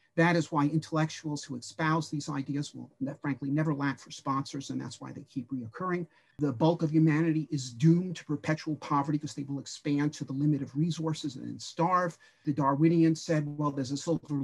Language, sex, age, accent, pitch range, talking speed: English, male, 50-69, American, 145-170 Hz, 200 wpm